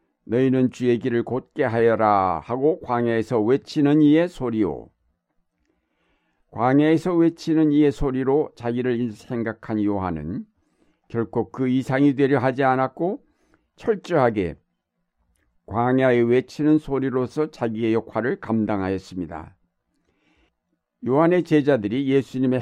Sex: male